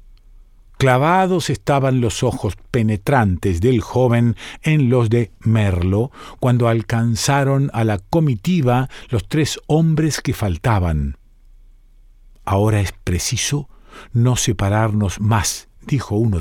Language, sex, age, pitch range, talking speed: Spanish, male, 50-69, 105-140 Hz, 105 wpm